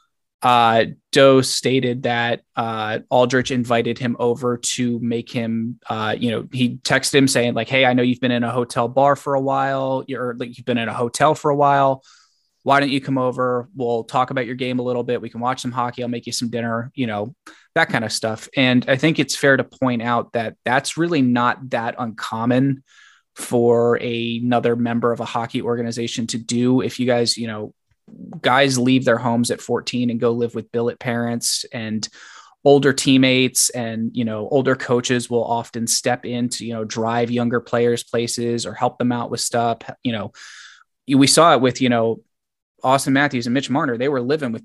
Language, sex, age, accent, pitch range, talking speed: English, male, 20-39, American, 115-130 Hz, 205 wpm